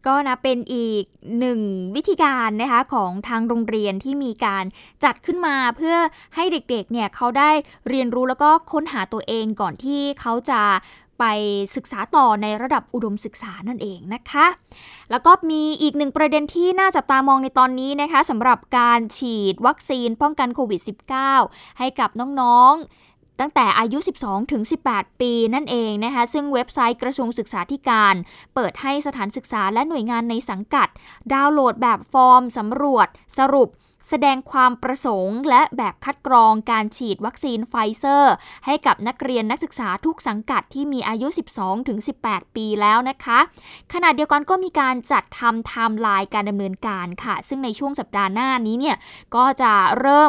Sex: female